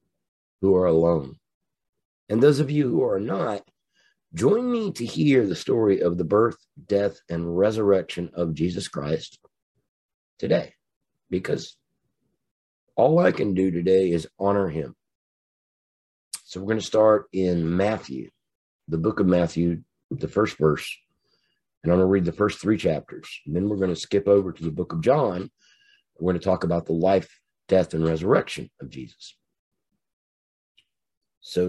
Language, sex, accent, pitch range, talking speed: English, male, American, 80-100 Hz, 155 wpm